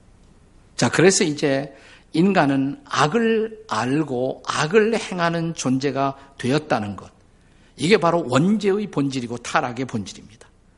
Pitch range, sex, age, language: 110-155 Hz, male, 50-69, Korean